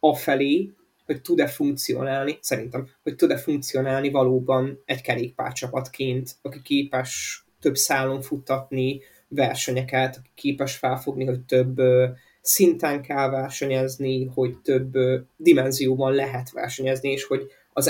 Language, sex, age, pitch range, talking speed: Hungarian, male, 20-39, 130-145 Hz, 110 wpm